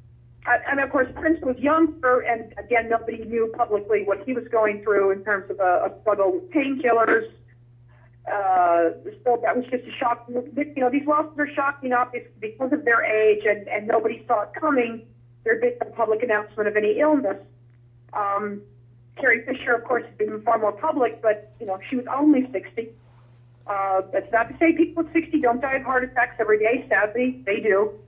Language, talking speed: English, 200 wpm